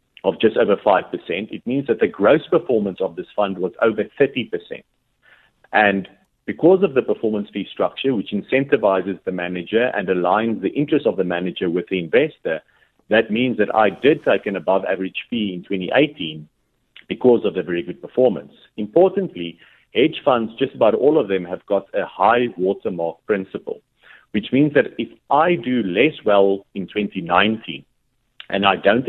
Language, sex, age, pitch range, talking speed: English, male, 50-69, 95-140 Hz, 170 wpm